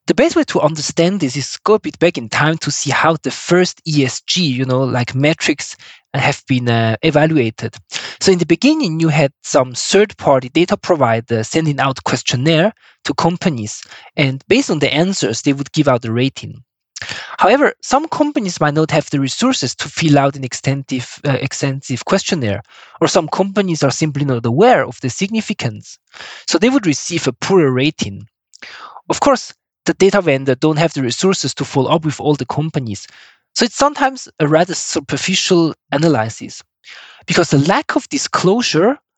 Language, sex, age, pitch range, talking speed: English, male, 20-39, 135-180 Hz, 175 wpm